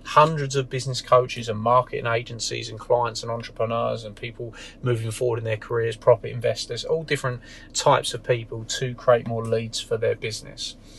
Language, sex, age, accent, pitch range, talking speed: English, male, 30-49, British, 115-140 Hz, 175 wpm